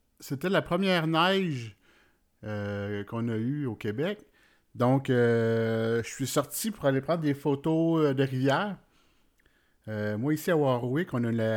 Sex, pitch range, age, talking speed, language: male, 110-145 Hz, 50-69, 155 wpm, French